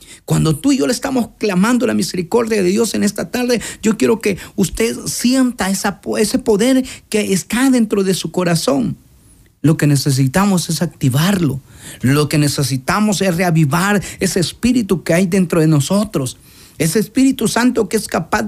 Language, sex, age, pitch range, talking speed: Spanish, male, 40-59, 175-215 Hz, 160 wpm